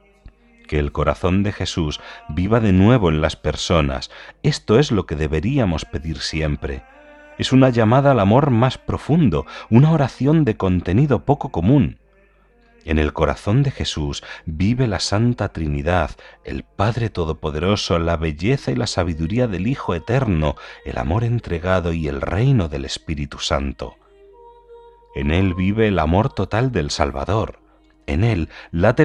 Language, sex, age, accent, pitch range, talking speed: Spanish, male, 40-59, Spanish, 80-125 Hz, 145 wpm